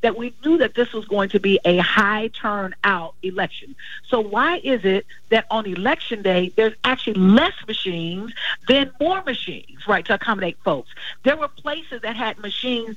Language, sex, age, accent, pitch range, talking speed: English, female, 50-69, American, 200-255 Hz, 175 wpm